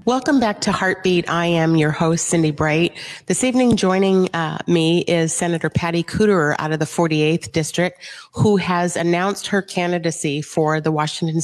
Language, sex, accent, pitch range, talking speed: English, female, American, 150-175 Hz, 170 wpm